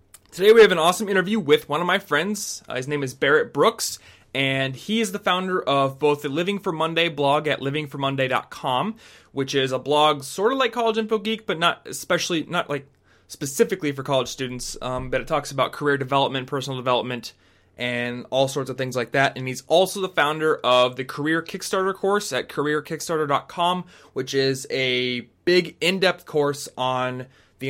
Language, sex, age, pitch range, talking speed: English, male, 20-39, 120-150 Hz, 185 wpm